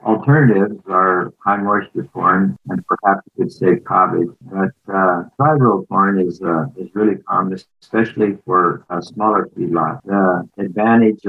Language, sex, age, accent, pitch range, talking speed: English, male, 50-69, American, 90-105 Hz, 150 wpm